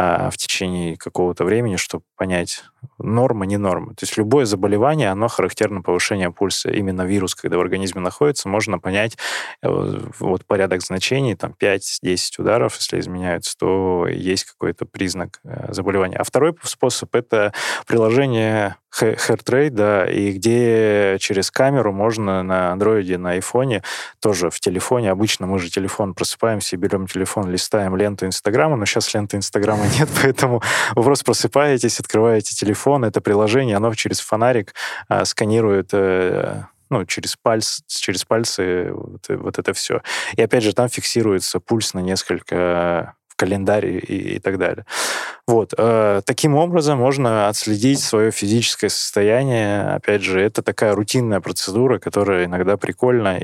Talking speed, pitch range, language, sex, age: 145 wpm, 95-115 Hz, Russian, male, 20-39